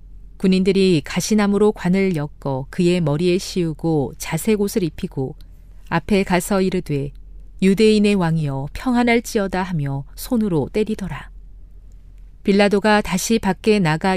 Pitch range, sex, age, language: 140-205 Hz, female, 40-59, Korean